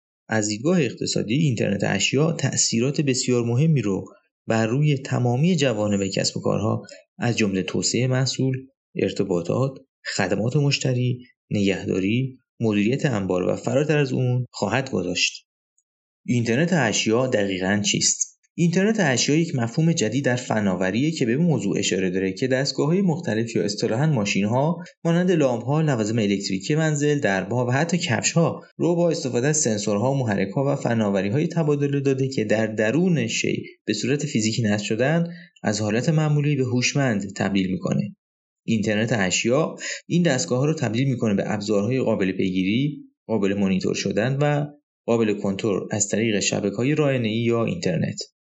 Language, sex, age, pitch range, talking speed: Persian, male, 30-49, 105-145 Hz, 140 wpm